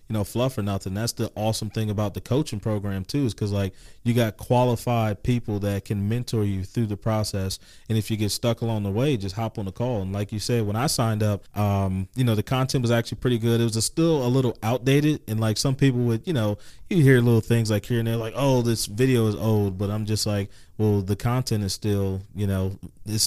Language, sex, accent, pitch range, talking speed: English, male, American, 105-125 Hz, 250 wpm